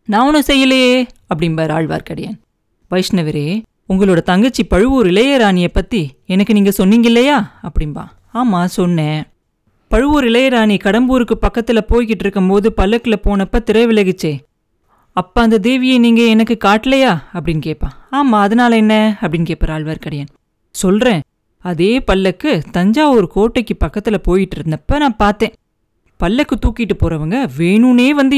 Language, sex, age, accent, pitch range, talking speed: Tamil, female, 30-49, native, 180-240 Hz, 120 wpm